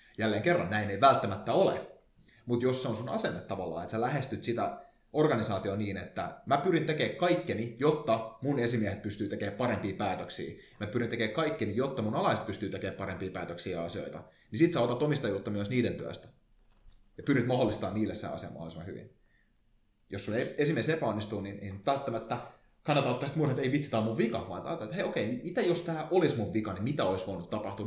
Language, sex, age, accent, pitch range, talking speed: Finnish, male, 30-49, native, 105-140 Hz, 190 wpm